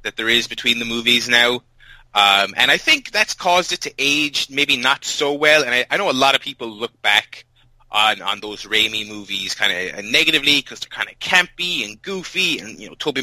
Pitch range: 110-150 Hz